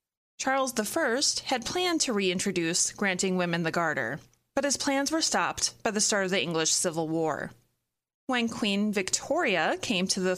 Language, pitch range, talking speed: English, 185-255 Hz, 170 wpm